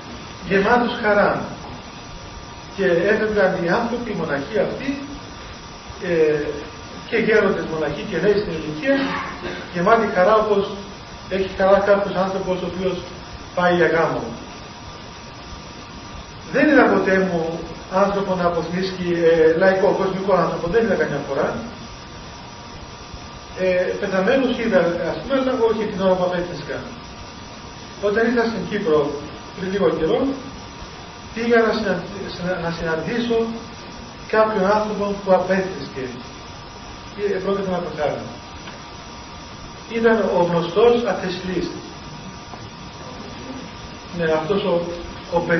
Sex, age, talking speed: male, 40-59, 105 wpm